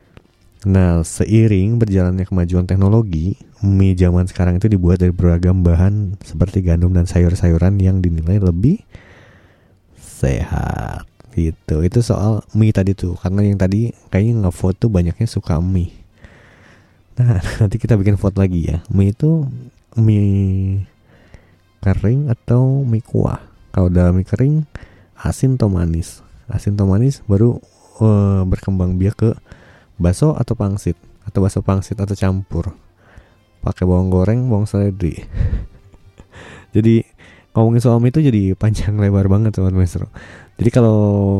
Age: 20-39